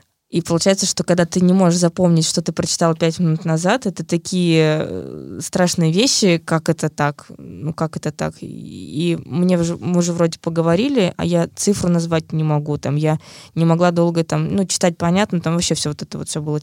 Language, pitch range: Russian, 160-180 Hz